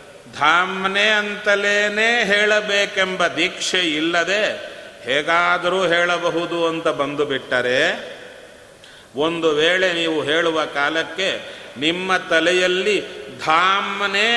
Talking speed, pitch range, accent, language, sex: 70 wpm, 165-205 Hz, native, Kannada, male